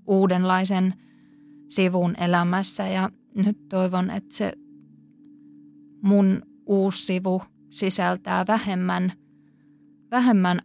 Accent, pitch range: native, 180-215 Hz